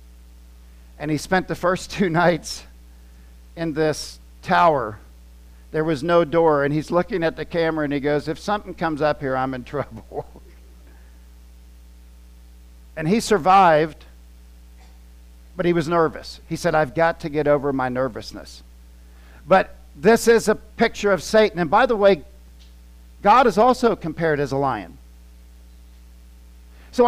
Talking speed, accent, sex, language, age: 145 wpm, American, male, English, 50-69